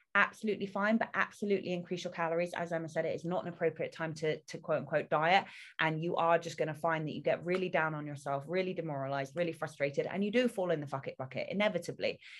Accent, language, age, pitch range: British, English, 20-39, 150-185 Hz